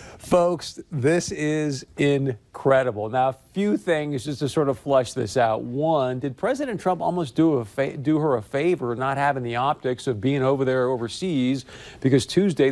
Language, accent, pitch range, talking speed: English, American, 125-160 Hz, 180 wpm